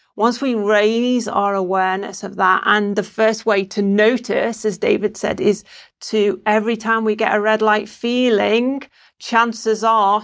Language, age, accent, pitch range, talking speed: English, 40-59, British, 195-220 Hz, 165 wpm